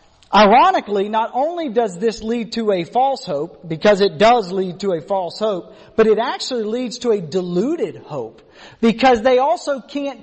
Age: 40-59